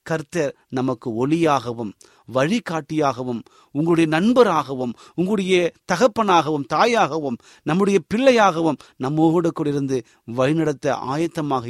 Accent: native